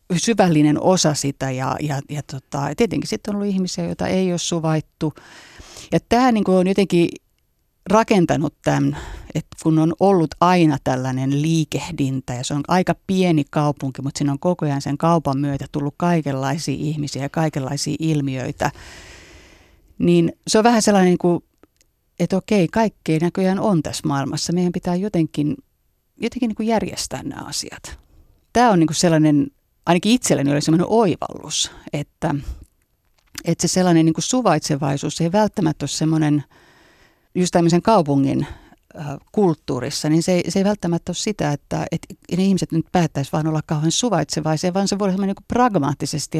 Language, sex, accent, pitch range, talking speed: Finnish, female, native, 145-185 Hz, 150 wpm